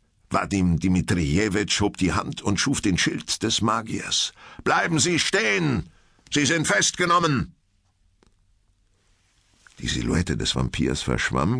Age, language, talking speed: 60-79, German, 115 wpm